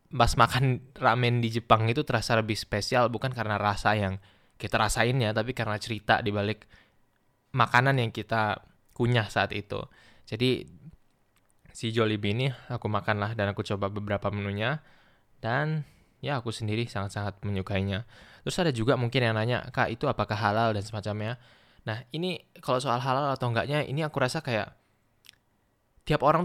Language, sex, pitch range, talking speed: Indonesian, male, 110-125 Hz, 155 wpm